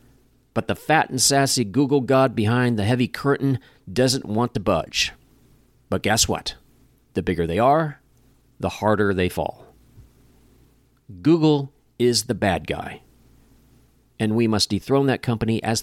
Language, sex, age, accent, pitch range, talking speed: English, male, 40-59, American, 105-135 Hz, 145 wpm